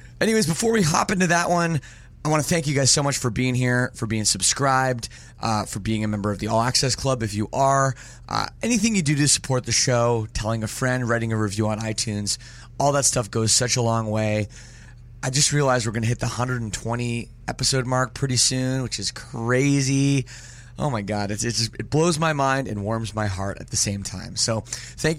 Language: English